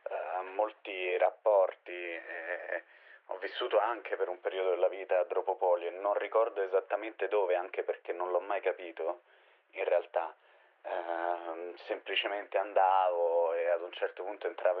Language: Italian